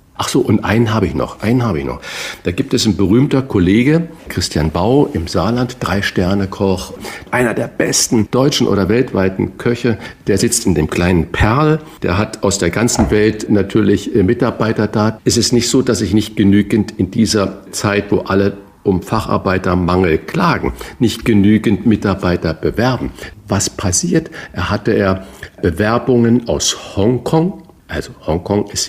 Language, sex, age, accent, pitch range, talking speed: German, male, 50-69, German, 100-125 Hz, 155 wpm